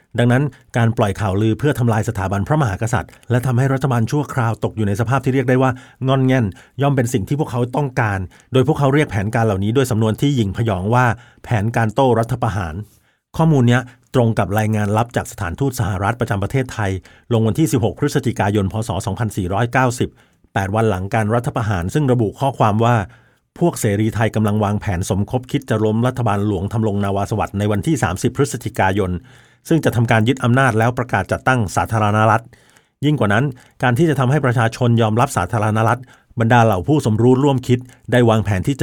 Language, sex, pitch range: Thai, male, 105-130 Hz